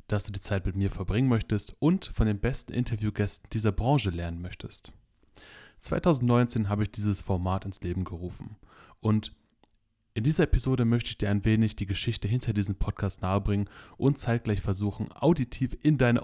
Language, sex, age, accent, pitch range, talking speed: German, male, 20-39, German, 100-110 Hz, 170 wpm